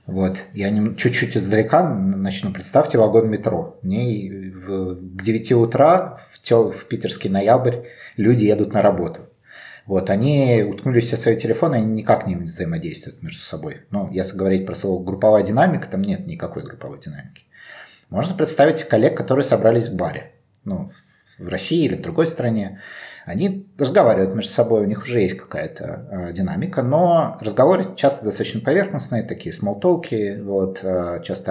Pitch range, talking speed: 95-135 Hz, 150 wpm